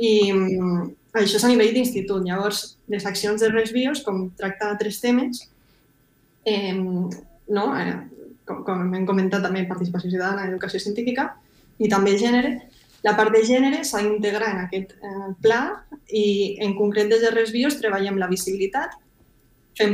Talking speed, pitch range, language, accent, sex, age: 150 wpm, 190-215 Hz, Spanish, Spanish, female, 20-39